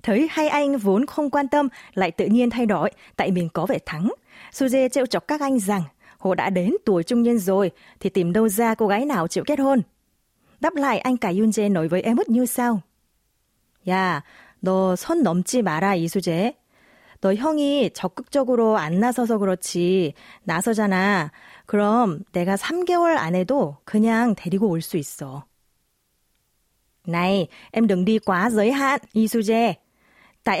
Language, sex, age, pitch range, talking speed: Vietnamese, female, 20-39, 180-245 Hz, 155 wpm